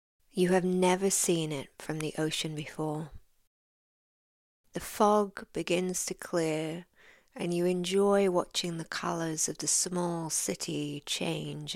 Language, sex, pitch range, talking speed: English, female, 155-190 Hz, 130 wpm